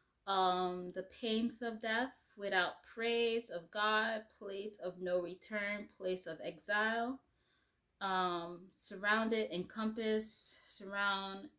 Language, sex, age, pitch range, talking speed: English, female, 20-39, 175-215 Hz, 105 wpm